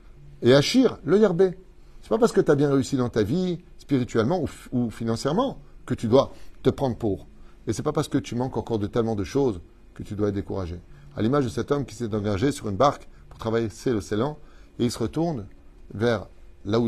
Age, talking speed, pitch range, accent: 30-49, 240 wpm, 105-135 Hz, French